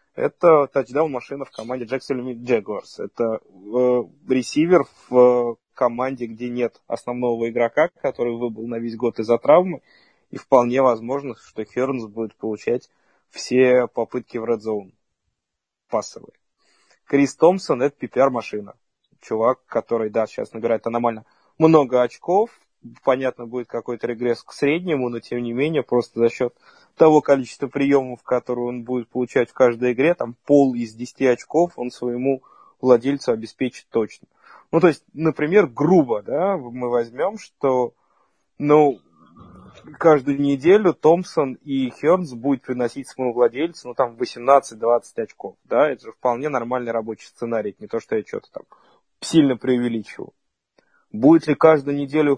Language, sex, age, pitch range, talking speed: Russian, male, 20-39, 120-140 Hz, 145 wpm